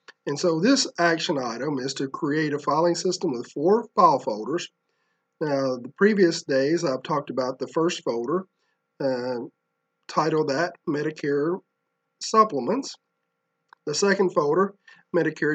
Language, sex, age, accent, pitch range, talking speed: English, male, 40-59, American, 135-180 Hz, 130 wpm